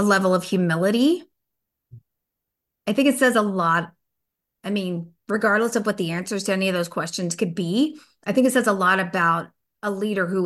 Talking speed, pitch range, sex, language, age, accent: 195 wpm, 175-210 Hz, female, English, 30-49, American